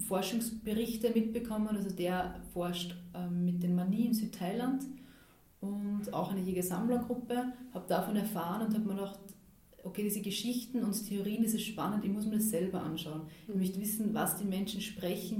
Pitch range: 185-215 Hz